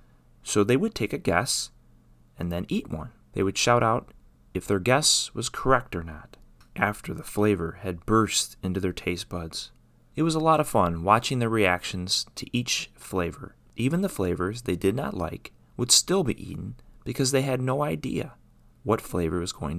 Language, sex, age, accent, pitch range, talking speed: English, male, 30-49, American, 90-130 Hz, 190 wpm